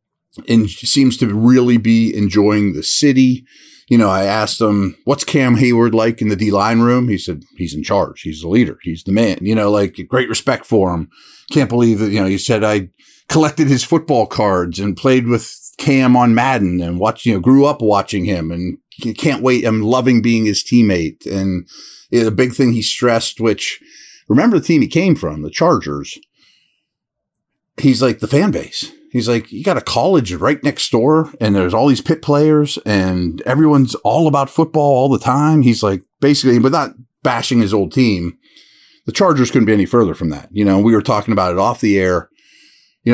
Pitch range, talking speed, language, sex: 95-130 Hz, 200 wpm, English, male